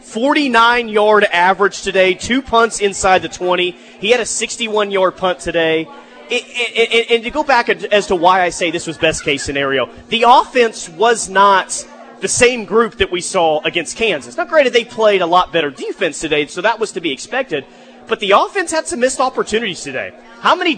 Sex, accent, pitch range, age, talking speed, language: male, American, 180-245 Hz, 30-49, 200 wpm, English